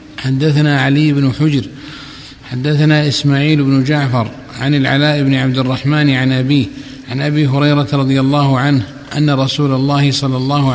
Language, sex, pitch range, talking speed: Arabic, male, 135-145 Hz, 145 wpm